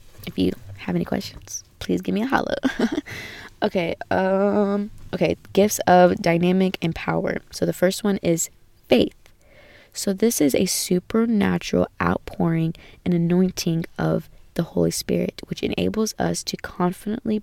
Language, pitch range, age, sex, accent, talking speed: English, 145-185 Hz, 20-39, female, American, 140 wpm